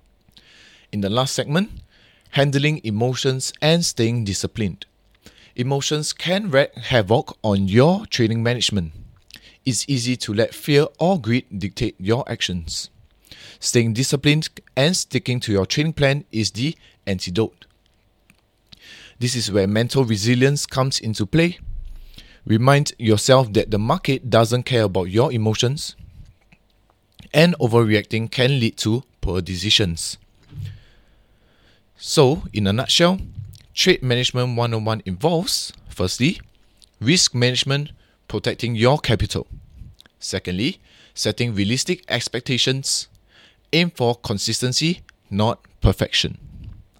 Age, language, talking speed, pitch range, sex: 20-39, English, 110 wpm, 105-135 Hz, male